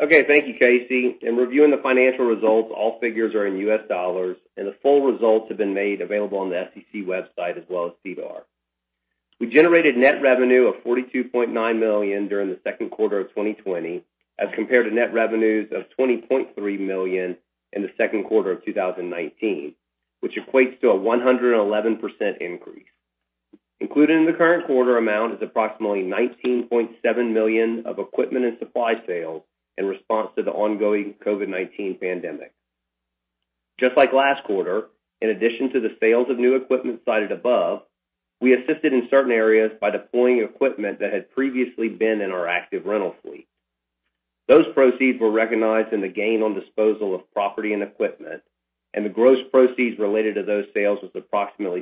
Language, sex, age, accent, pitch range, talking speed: English, male, 40-59, American, 95-125 Hz, 160 wpm